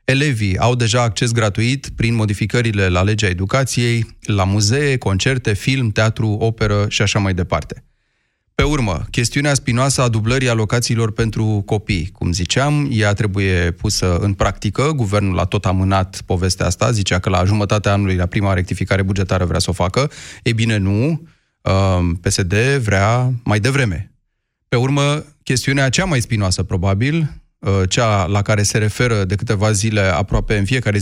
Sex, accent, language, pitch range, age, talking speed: male, native, Romanian, 95-125 Hz, 30-49, 155 wpm